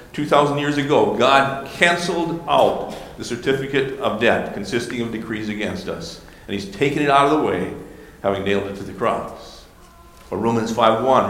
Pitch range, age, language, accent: 110-145 Hz, 50-69, English, American